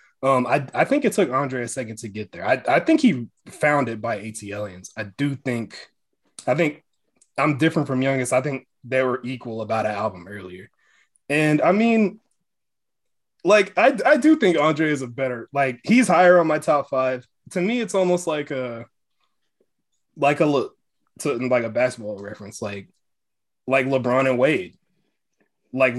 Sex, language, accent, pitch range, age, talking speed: male, English, American, 115-150 Hz, 20-39, 180 wpm